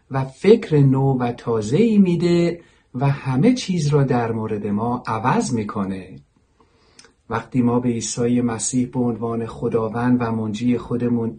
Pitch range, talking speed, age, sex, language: 115-150 Hz, 135 wpm, 50-69, male, Persian